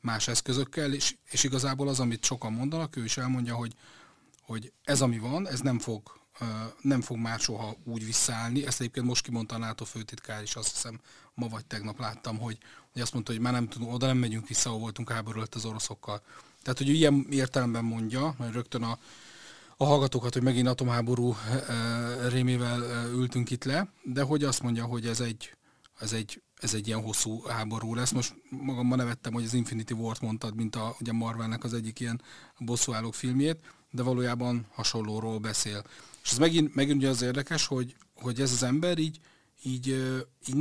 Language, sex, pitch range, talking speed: Hungarian, male, 115-130 Hz, 185 wpm